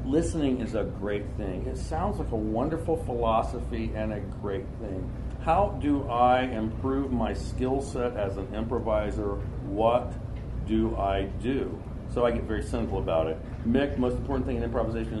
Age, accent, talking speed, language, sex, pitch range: 50-69, American, 165 wpm, English, male, 105-125 Hz